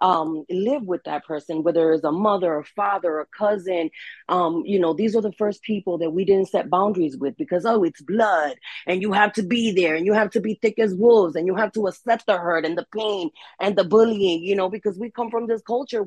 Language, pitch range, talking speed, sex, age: English, 165-215 Hz, 245 wpm, female, 30-49